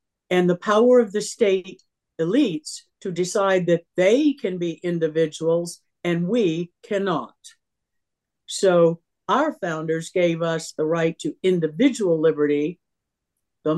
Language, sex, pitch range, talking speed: English, female, 170-225 Hz, 120 wpm